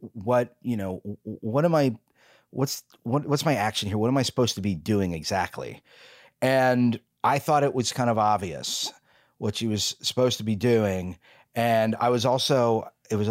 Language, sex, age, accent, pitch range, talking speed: English, male, 30-49, American, 110-125 Hz, 180 wpm